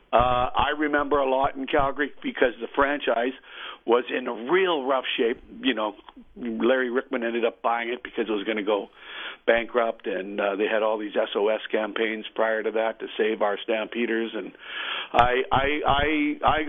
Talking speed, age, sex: 185 wpm, 60-79, male